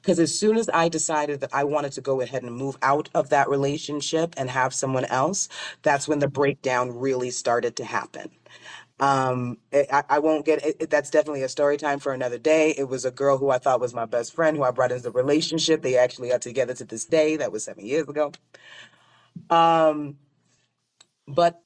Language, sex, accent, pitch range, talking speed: English, female, American, 130-150 Hz, 210 wpm